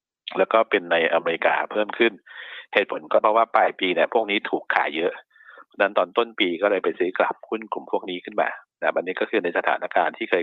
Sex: male